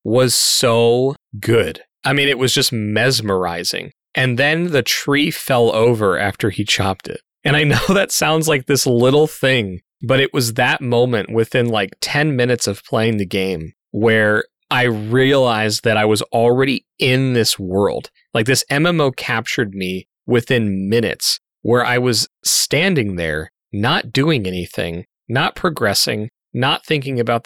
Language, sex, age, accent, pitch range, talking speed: English, male, 30-49, American, 115-145 Hz, 155 wpm